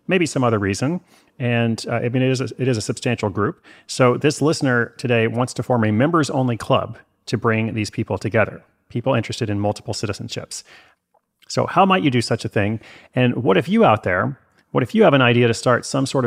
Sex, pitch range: male, 110-140 Hz